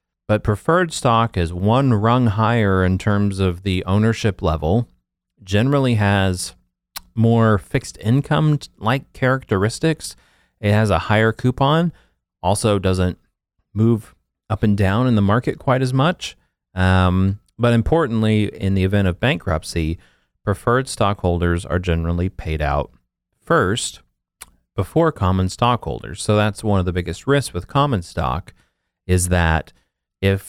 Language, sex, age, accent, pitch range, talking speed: English, male, 30-49, American, 90-115 Hz, 130 wpm